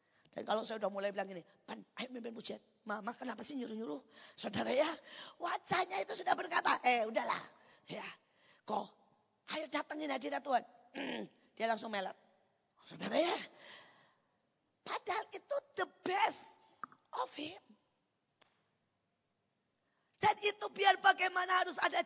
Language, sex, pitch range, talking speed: Indonesian, female, 225-345 Hz, 120 wpm